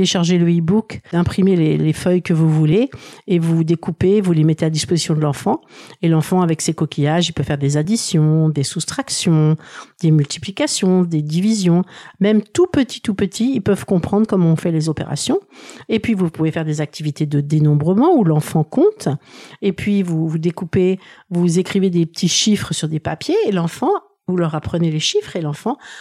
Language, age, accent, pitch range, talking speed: French, 50-69, French, 160-195 Hz, 190 wpm